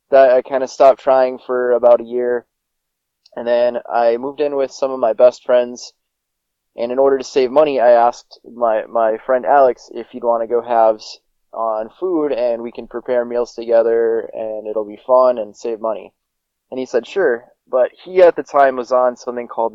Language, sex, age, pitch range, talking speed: English, male, 20-39, 115-135 Hz, 205 wpm